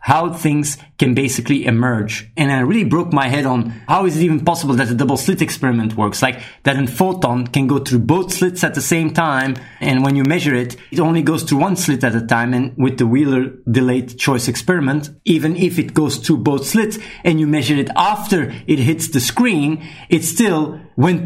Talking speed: 215 wpm